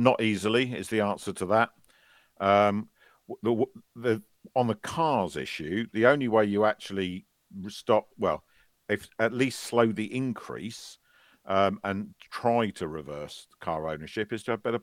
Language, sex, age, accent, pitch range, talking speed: English, male, 50-69, British, 90-115 Hz, 155 wpm